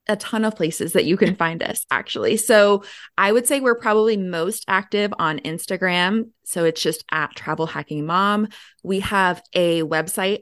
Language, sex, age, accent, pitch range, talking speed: English, female, 20-39, American, 165-200 Hz, 180 wpm